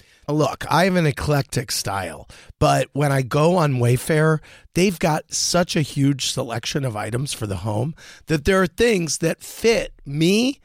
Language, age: English, 40-59